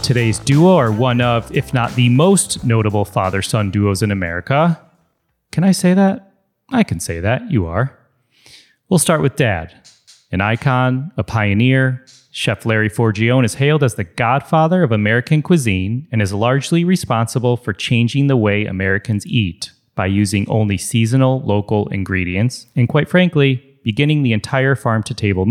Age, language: 30-49, English